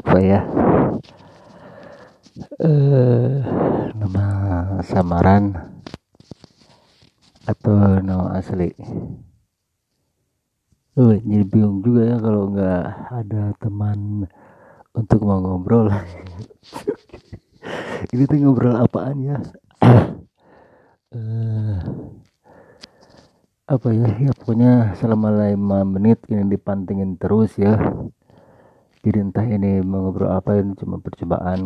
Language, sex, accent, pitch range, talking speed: Indonesian, male, native, 95-110 Hz, 85 wpm